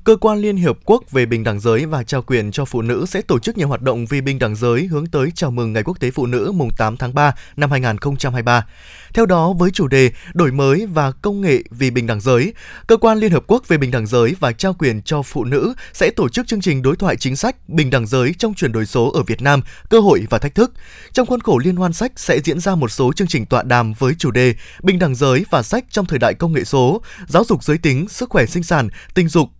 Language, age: Vietnamese, 20-39